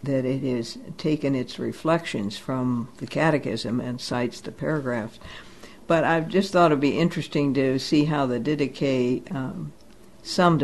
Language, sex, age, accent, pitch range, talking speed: English, female, 60-79, American, 130-160 Hz, 160 wpm